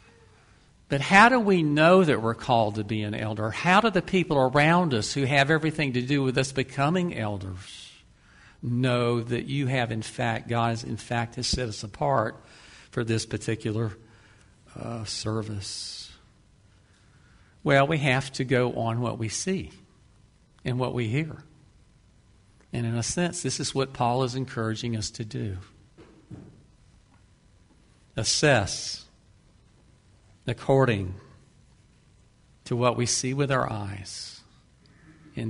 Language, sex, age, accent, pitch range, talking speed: English, male, 50-69, American, 110-135 Hz, 135 wpm